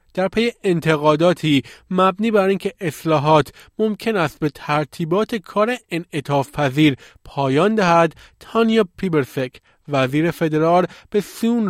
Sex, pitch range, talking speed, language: male, 140-180 Hz, 120 wpm, Persian